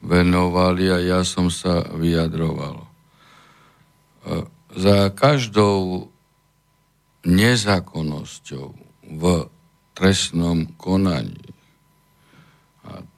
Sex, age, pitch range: male, 60-79, 80-90 Hz